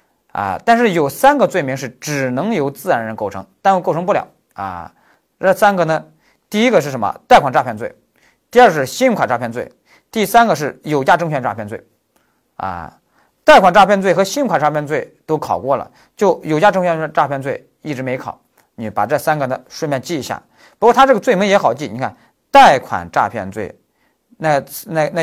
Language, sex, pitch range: Chinese, male, 140-195 Hz